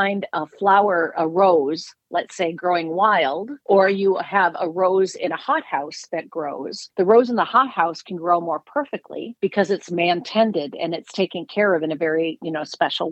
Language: English